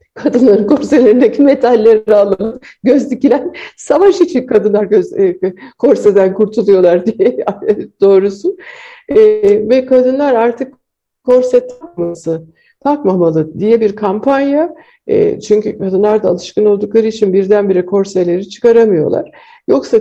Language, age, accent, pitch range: Turkish, 60-79, native, 195-285 Hz